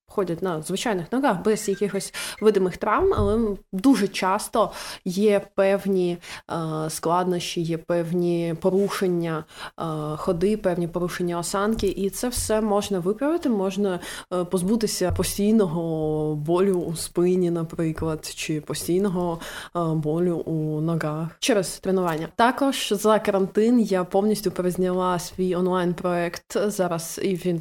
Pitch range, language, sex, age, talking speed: 175-205 Hz, Ukrainian, female, 20-39, 110 wpm